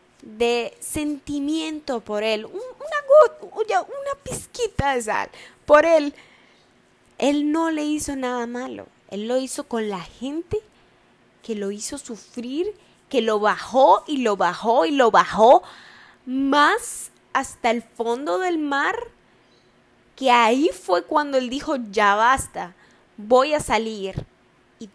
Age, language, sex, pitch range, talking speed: 10-29, Spanish, female, 220-290 Hz, 130 wpm